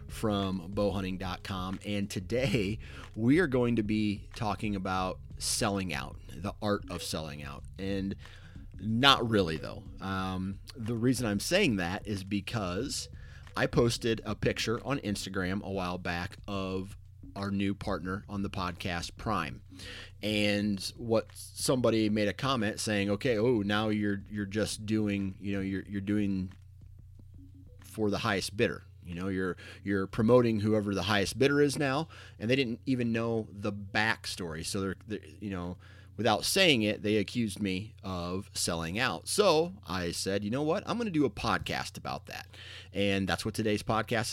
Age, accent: 30-49, American